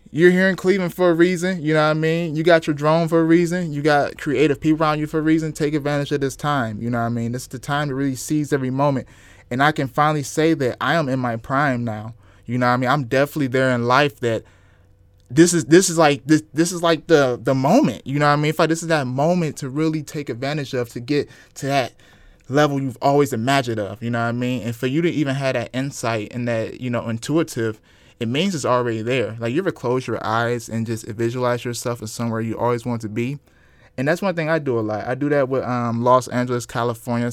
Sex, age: male, 20-39